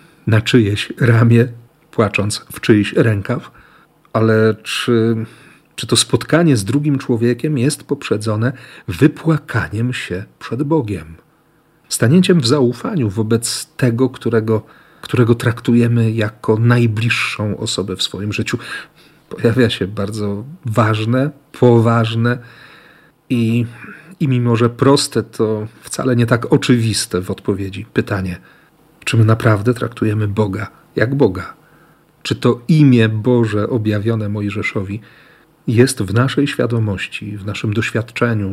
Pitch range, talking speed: 110-130 Hz, 115 wpm